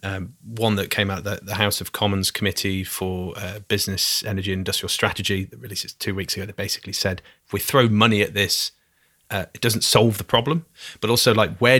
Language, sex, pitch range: English, male, 100-120 Hz